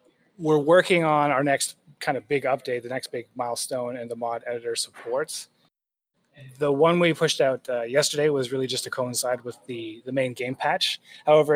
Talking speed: 190 wpm